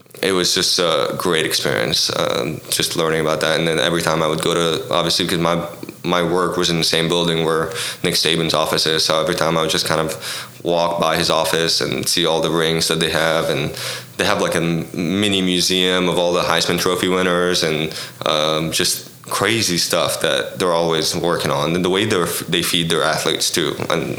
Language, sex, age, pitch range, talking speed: English, male, 20-39, 80-100 Hz, 215 wpm